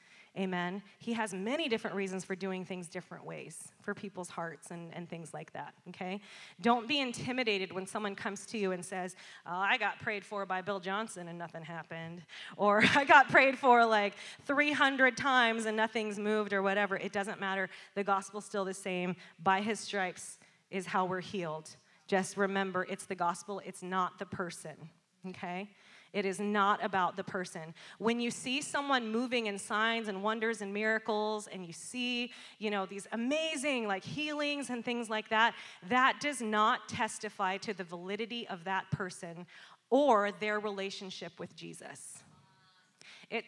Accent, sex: American, female